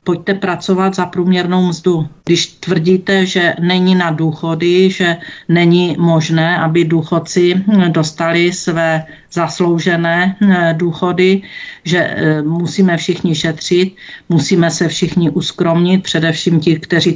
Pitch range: 160-185 Hz